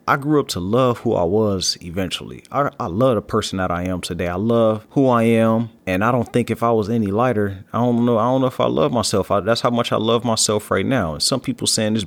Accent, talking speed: American, 275 wpm